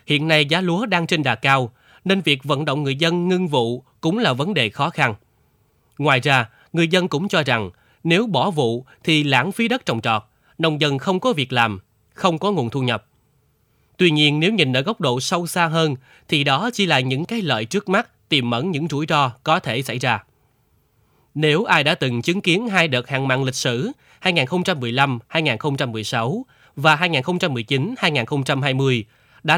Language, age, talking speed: Vietnamese, 20-39, 190 wpm